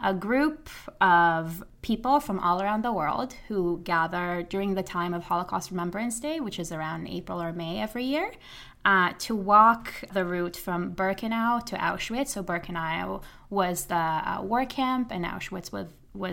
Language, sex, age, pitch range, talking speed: English, female, 20-39, 175-210 Hz, 165 wpm